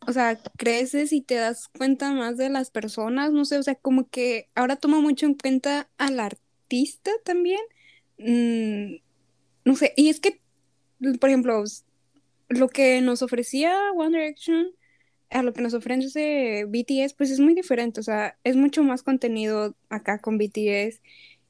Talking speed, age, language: 160 wpm, 10-29, Spanish